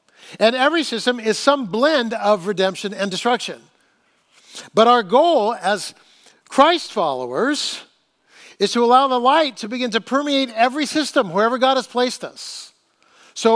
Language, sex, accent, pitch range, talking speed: English, male, American, 205-270 Hz, 145 wpm